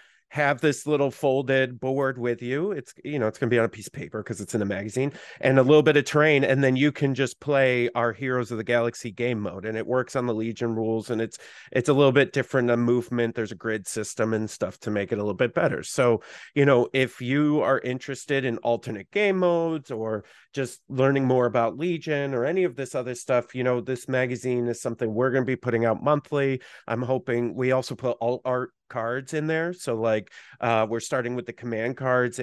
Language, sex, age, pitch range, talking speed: English, male, 30-49, 110-135 Hz, 235 wpm